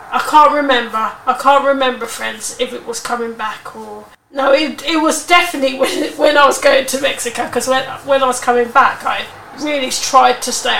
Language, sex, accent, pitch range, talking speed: English, female, British, 235-275 Hz, 205 wpm